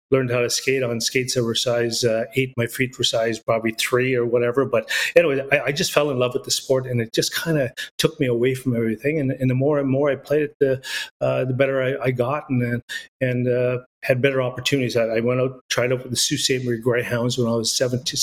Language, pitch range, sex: English, 120-135 Hz, male